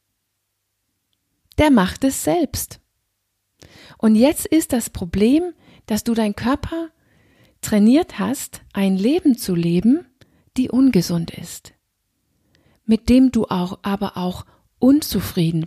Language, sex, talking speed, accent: German, female, 110 wpm, German